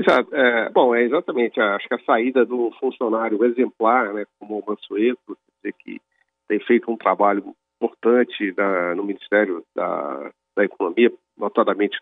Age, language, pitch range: 40-59, Portuguese, 100-130 Hz